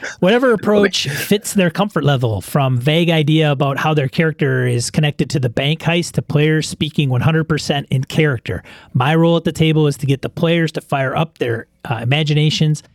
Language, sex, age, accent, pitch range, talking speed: English, male, 30-49, American, 135-165 Hz, 190 wpm